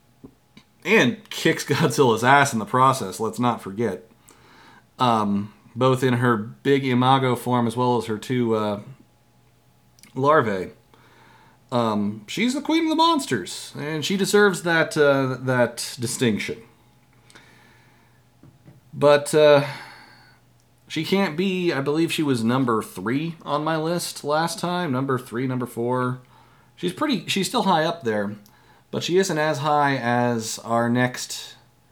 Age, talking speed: 40-59, 135 wpm